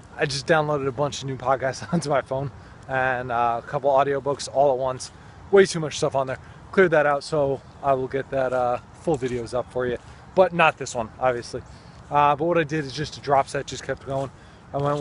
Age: 20-39